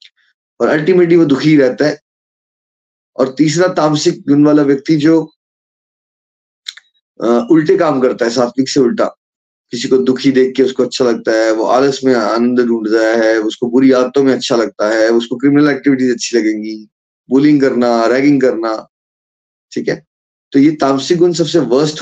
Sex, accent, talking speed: male, native, 160 wpm